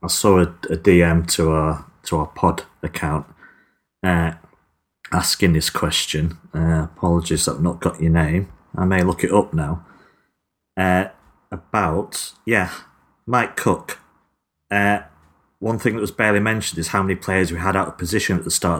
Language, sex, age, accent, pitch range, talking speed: English, male, 40-59, British, 85-105 Hz, 165 wpm